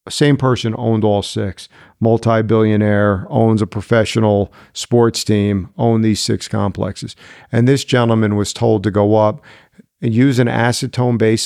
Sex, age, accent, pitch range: male, 50-69, American, 105-120 Hz